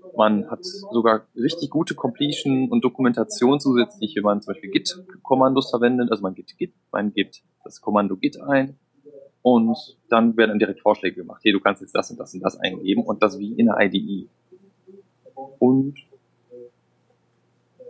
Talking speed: 155 wpm